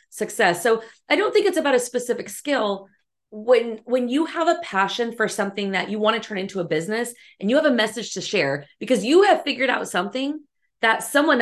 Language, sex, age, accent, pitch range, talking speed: English, female, 30-49, American, 195-275 Hz, 215 wpm